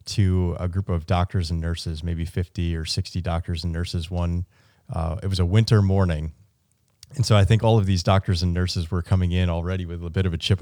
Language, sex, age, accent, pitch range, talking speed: English, male, 30-49, American, 90-105 Hz, 230 wpm